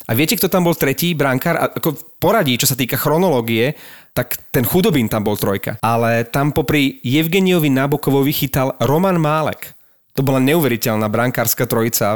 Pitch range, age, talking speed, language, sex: 120-155 Hz, 30-49, 170 wpm, Slovak, male